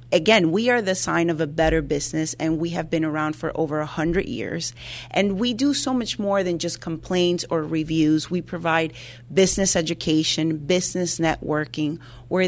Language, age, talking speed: English, 30-49, 180 wpm